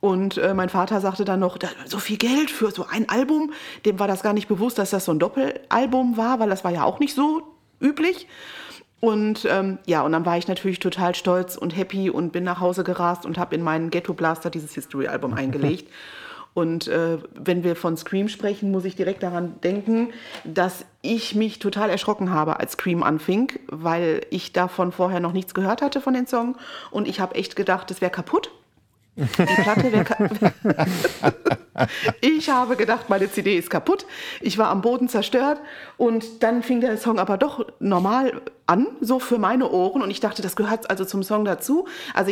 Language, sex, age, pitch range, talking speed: German, female, 30-49, 180-235 Hz, 195 wpm